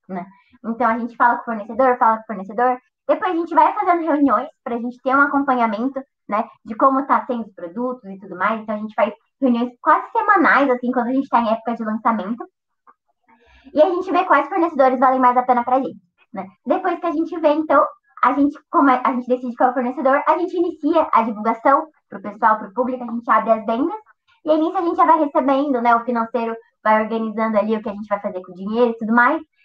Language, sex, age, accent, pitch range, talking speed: Portuguese, male, 20-39, Brazilian, 230-290 Hz, 235 wpm